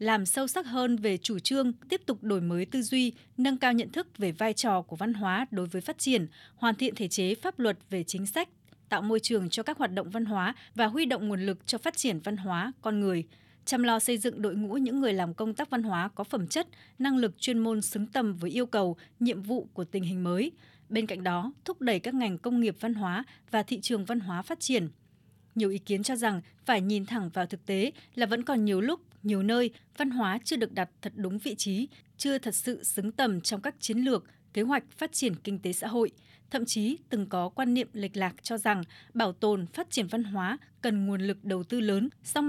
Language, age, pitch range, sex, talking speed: Vietnamese, 20-39, 195-245 Hz, female, 245 wpm